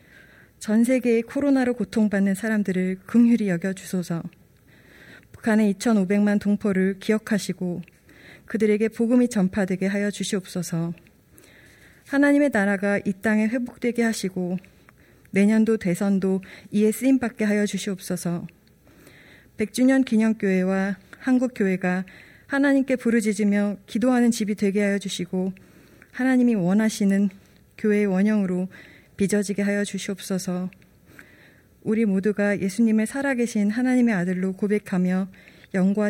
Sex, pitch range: female, 185-220 Hz